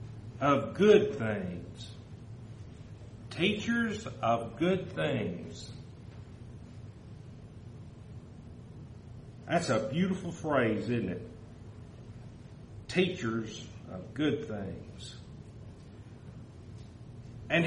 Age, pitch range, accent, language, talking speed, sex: 60-79, 115-155 Hz, American, English, 60 wpm, male